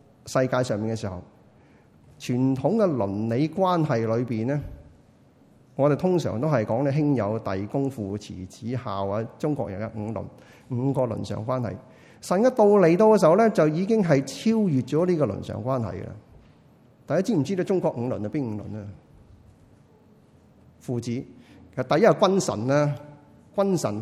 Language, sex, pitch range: Chinese, male, 110-155 Hz